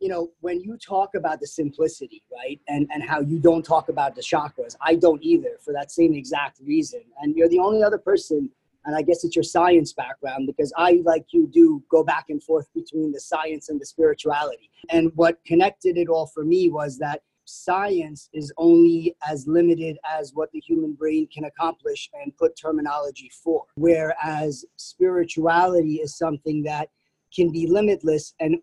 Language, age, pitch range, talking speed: English, 30-49, 155-180 Hz, 185 wpm